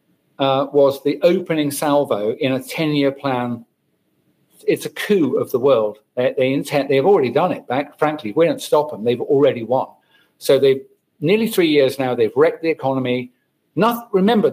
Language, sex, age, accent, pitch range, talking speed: Dutch, male, 50-69, British, 130-180 Hz, 180 wpm